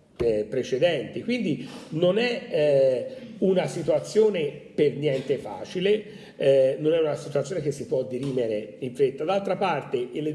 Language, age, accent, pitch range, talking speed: Italian, 40-59, native, 130-190 Hz, 140 wpm